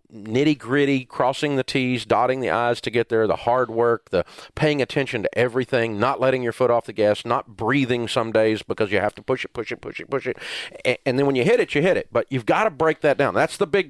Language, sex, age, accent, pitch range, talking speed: English, male, 40-59, American, 120-150 Hz, 260 wpm